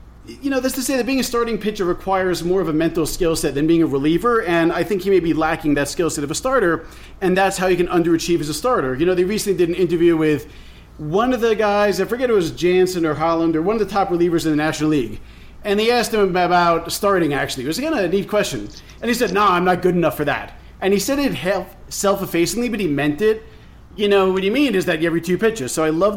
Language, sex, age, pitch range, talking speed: English, male, 30-49, 155-205 Hz, 275 wpm